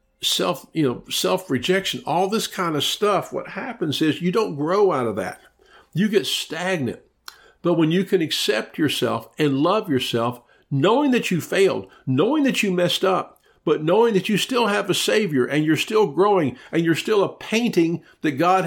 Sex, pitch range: male, 145-200 Hz